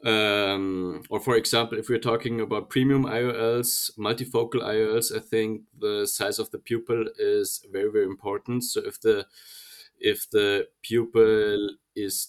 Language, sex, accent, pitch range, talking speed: English, male, German, 105-135 Hz, 145 wpm